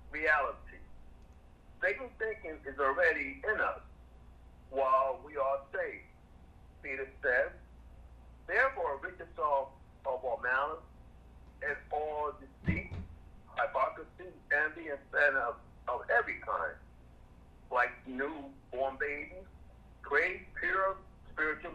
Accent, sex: American, male